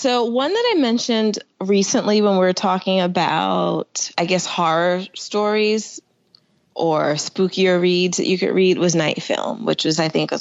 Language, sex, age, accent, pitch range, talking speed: English, female, 20-39, American, 165-215 Hz, 165 wpm